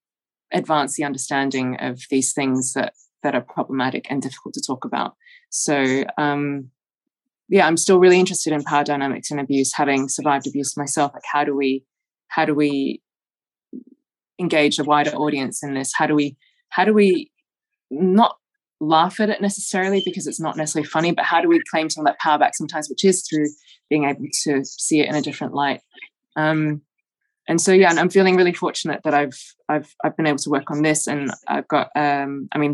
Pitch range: 145-170 Hz